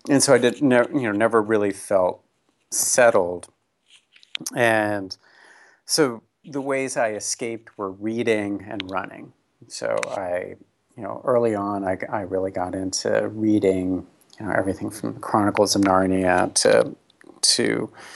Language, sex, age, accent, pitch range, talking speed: English, male, 40-59, American, 95-110 Hz, 135 wpm